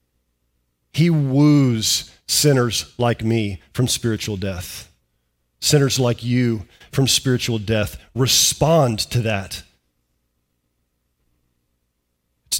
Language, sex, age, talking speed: English, male, 40-59, 85 wpm